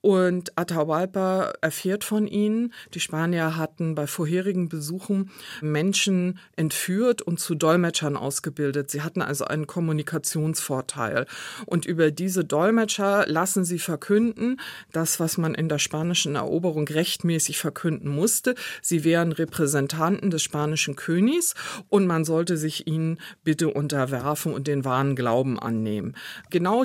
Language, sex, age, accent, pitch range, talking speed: German, female, 40-59, German, 150-190 Hz, 130 wpm